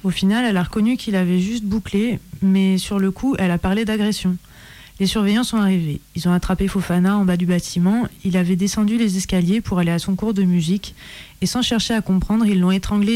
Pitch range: 180-210 Hz